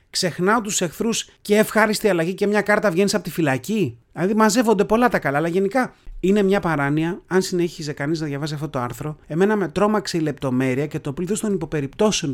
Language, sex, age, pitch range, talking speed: Greek, male, 30-49, 135-200 Hz, 200 wpm